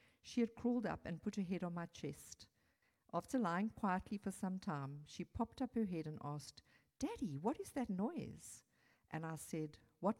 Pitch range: 155-200 Hz